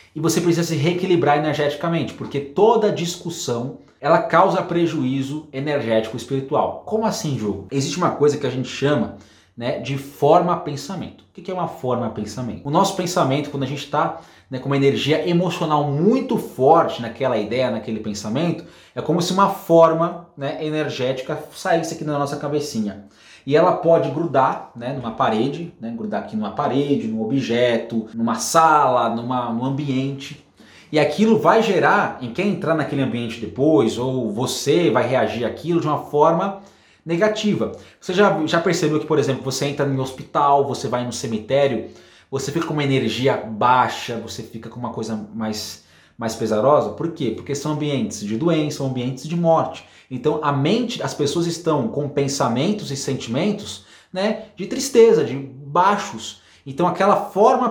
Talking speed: 165 wpm